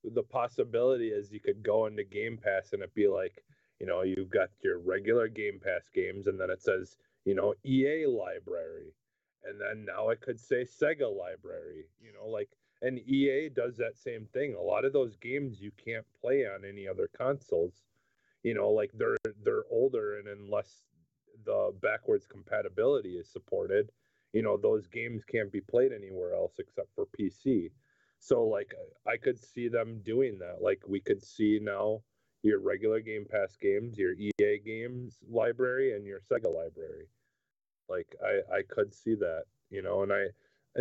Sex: male